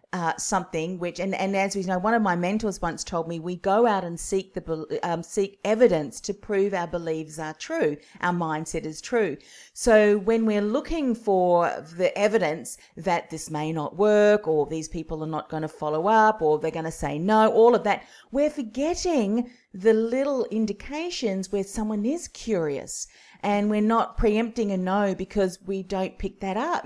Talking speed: 190 wpm